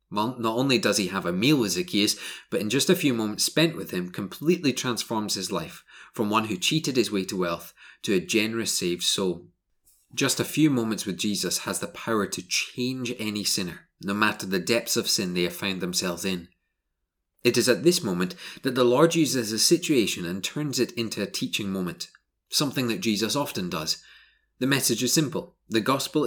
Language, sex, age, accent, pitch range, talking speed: English, male, 30-49, British, 95-125 Hz, 205 wpm